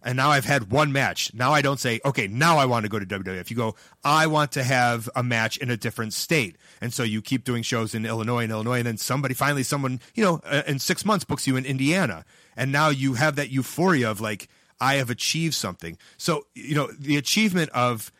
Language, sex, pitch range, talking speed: English, male, 120-155 Hz, 235 wpm